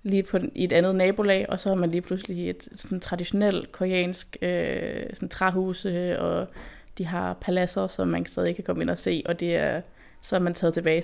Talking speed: 210 wpm